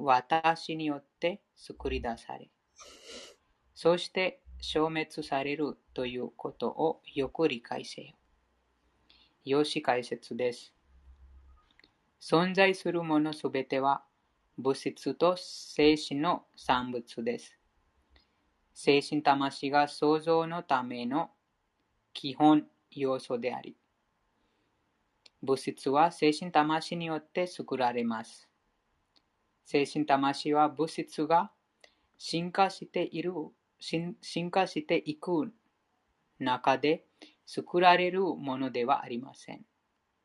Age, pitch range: 20-39, 125-165 Hz